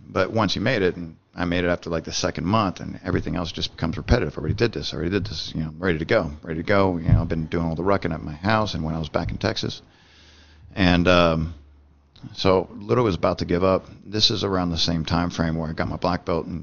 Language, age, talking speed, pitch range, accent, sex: English, 40-59, 280 wpm, 80-95 Hz, American, male